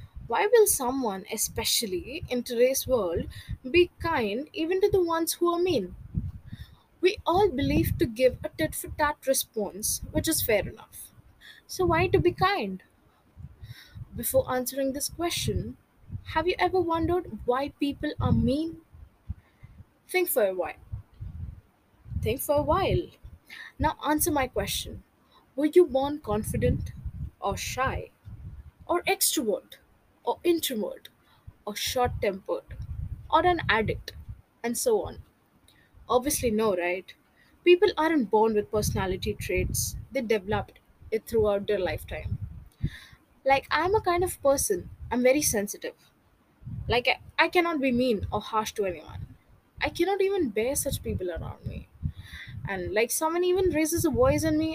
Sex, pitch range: female, 220-345 Hz